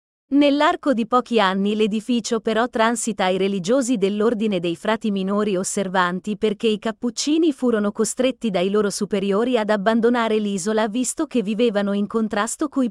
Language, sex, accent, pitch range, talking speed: Italian, female, native, 200-250 Hz, 145 wpm